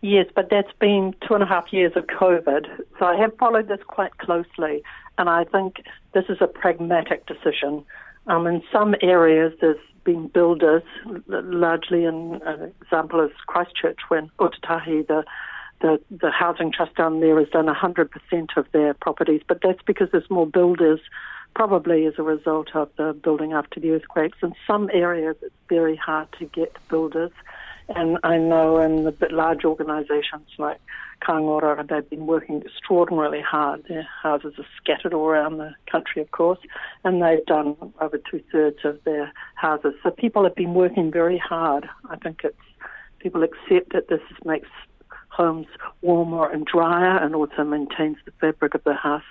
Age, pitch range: 60-79, 155-175 Hz